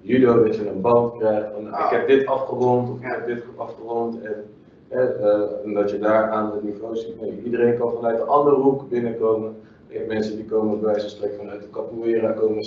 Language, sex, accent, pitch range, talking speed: Dutch, male, Dutch, 105-125 Hz, 210 wpm